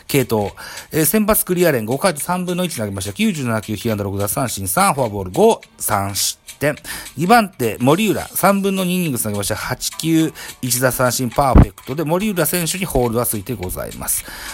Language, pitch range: Japanese, 100-165 Hz